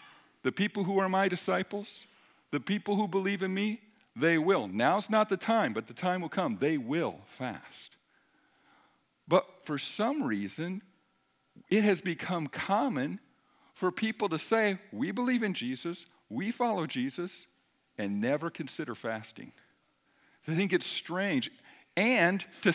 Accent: American